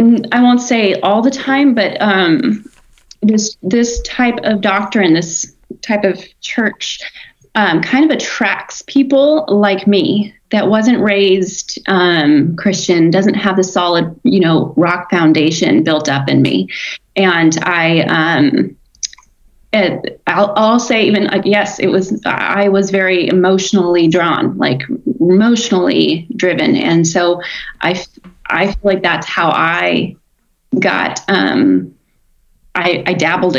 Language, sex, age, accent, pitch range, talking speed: English, female, 20-39, American, 180-220 Hz, 130 wpm